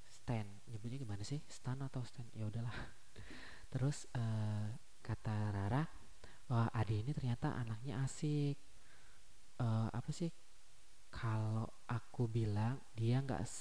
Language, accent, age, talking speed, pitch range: Indonesian, native, 20-39, 115 wpm, 105-120 Hz